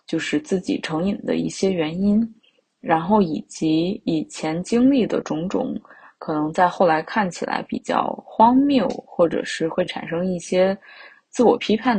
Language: Chinese